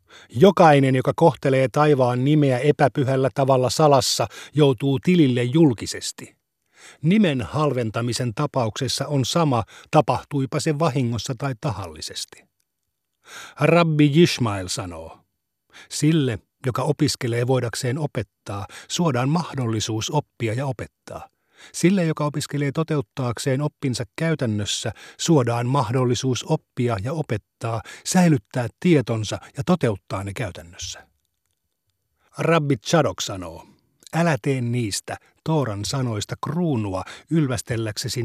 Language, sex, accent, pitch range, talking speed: Finnish, male, native, 115-150 Hz, 95 wpm